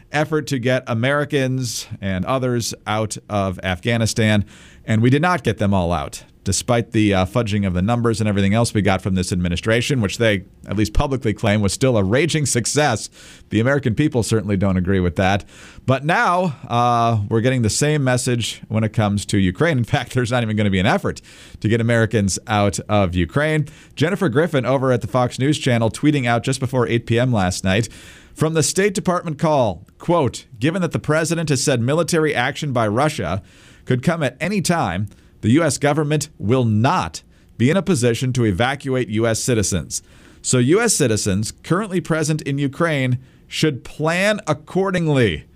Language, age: English, 40-59